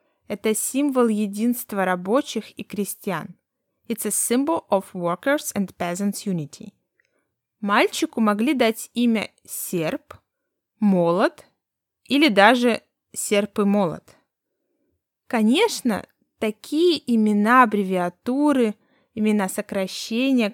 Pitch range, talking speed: 190-245 Hz, 80 wpm